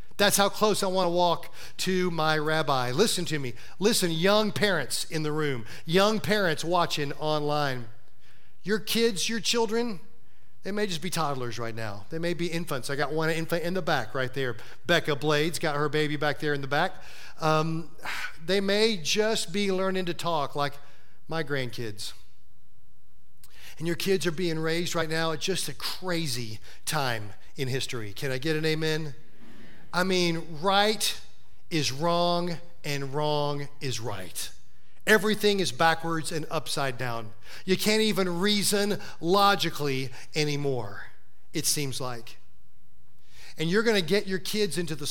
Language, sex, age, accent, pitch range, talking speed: English, male, 40-59, American, 140-190 Hz, 160 wpm